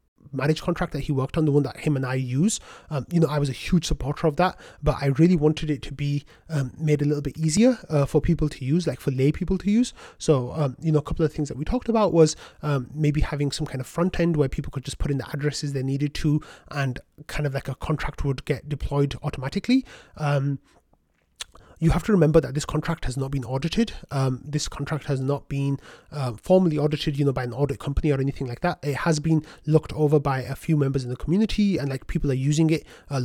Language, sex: English, male